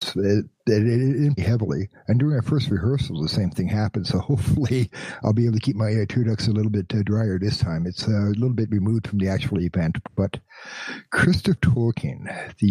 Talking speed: 220 wpm